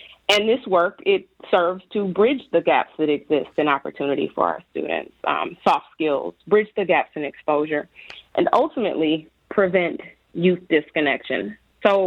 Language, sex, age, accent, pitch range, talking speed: English, female, 30-49, American, 175-215 Hz, 150 wpm